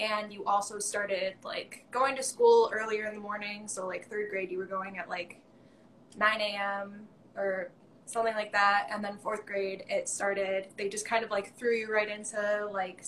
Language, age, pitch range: English, 10-29, 200-240 Hz